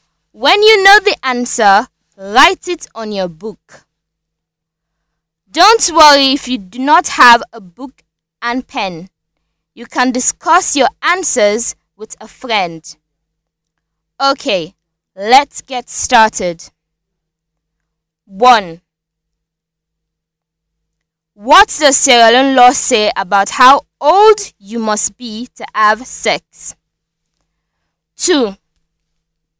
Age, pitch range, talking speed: 20-39, 160-260 Hz, 100 wpm